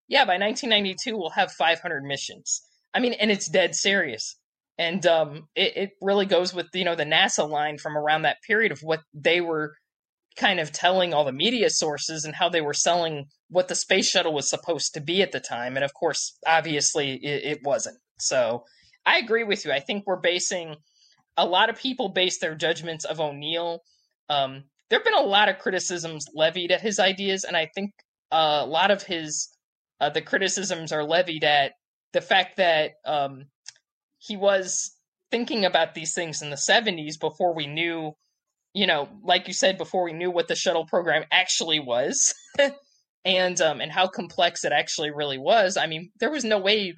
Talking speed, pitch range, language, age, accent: 195 wpm, 155-195 Hz, English, 20-39, American